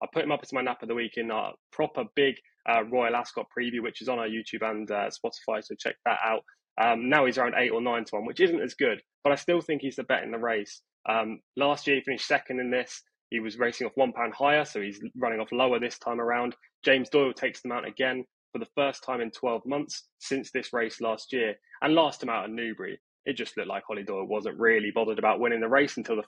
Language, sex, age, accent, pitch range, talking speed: English, male, 10-29, British, 115-140 Hz, 265 wpm